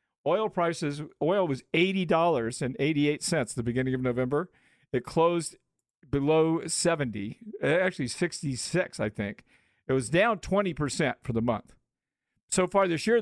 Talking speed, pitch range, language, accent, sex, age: 130 wpm, 125-165 Hz, English, American, male, 50-69